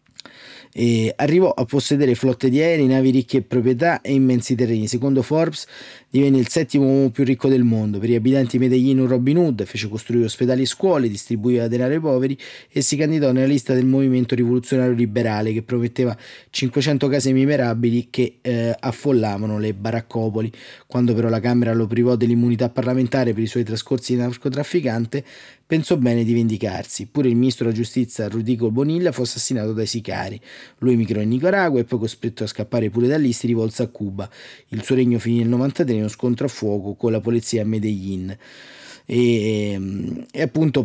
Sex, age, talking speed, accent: male, 20-39, 180 wpm, native